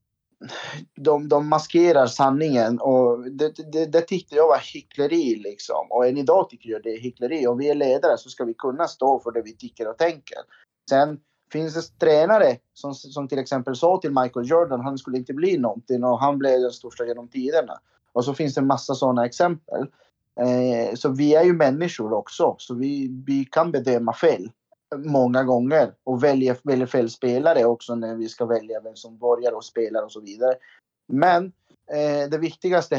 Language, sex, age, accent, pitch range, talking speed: Swedish, male, 30-49, native, 125-160 Hz, 190 wpm